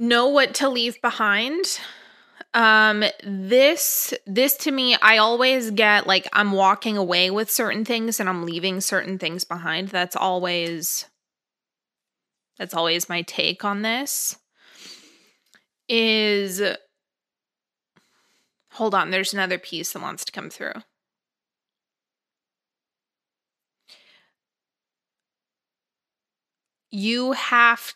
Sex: female